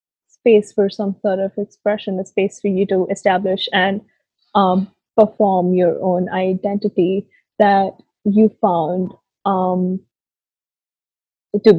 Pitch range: 180-205 Hz